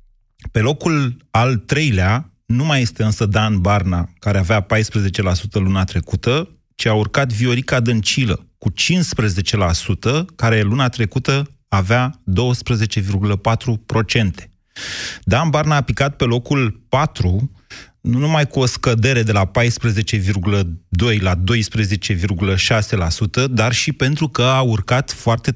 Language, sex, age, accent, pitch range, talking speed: Romanian, male, 30-49, native, 105-135 Hz, 120 wpm